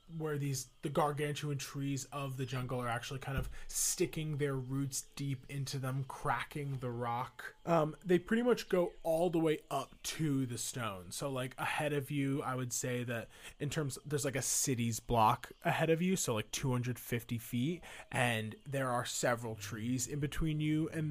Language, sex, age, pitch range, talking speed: English, male, 20-39, 125-155 Hz, 185 wpm